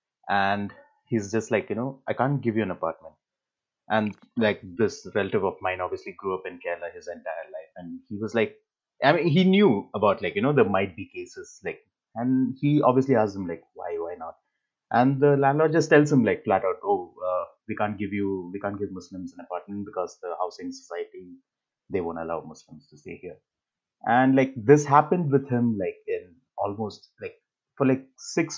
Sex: male